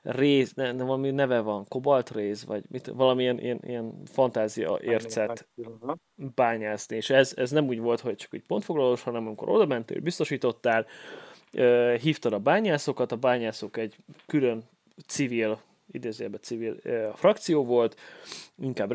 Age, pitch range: 20-39, 115-130 Hz